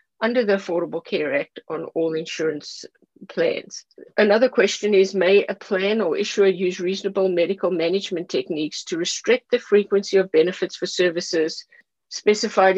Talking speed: 145 wpm